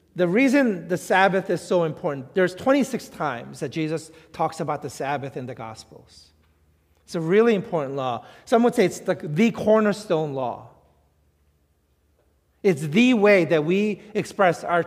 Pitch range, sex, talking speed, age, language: 150-200 Hz, male, 155 wpm, 40-59, English